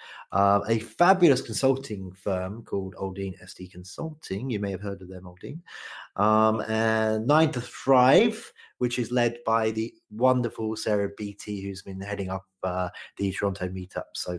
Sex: male